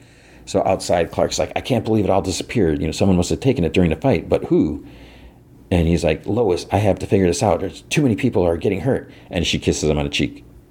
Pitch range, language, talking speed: 80-95 Hz, English, 260 wpm